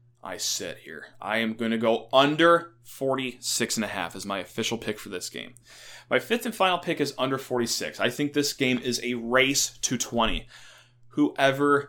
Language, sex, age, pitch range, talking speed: English, male, 20-39, 115-130 Hz, 175 wpm